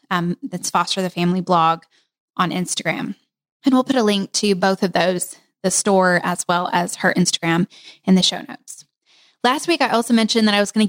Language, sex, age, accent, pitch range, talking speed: English, female, 10-29, American, 180-220 Hz, 210 wpm